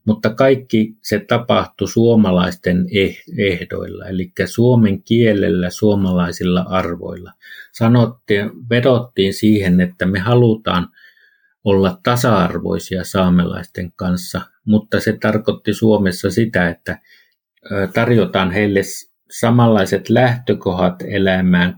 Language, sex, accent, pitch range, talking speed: Finnish, male, native, 90-110 Hz, 85 wpm